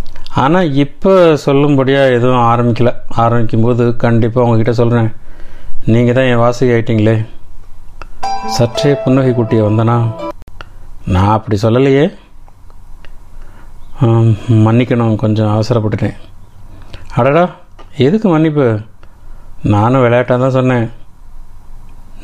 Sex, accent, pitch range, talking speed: male, native, 105-130 Hz, 80 wpm